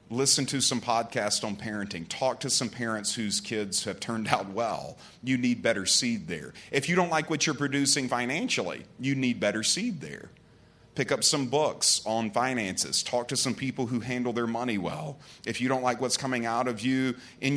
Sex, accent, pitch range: male, American, 110-140 Hz